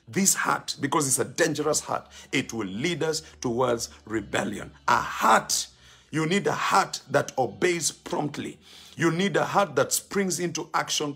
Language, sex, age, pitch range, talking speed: English, male, 50-69, 115-165 Hz, 160 wpm